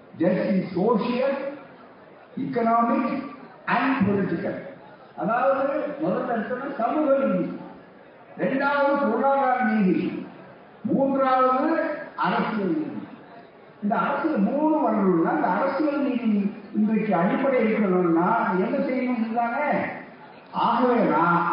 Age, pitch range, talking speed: 50-69, 185-275 Hz, 70 wpm